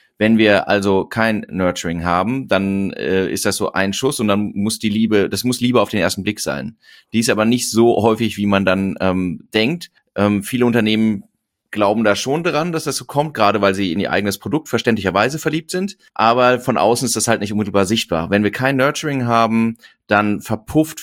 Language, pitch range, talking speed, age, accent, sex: German, 105-130 Hz, 210 wpm, 30-49, German, male